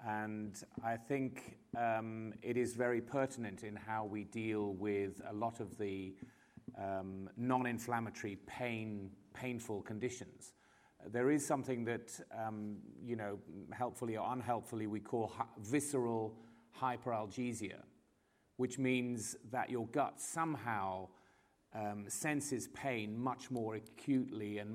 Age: 40-59